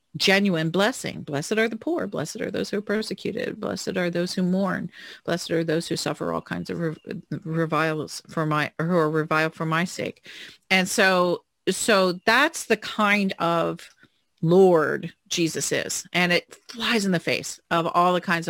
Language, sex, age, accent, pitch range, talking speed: English, female, 40-59, American, 165-205 Hz, 180 wpm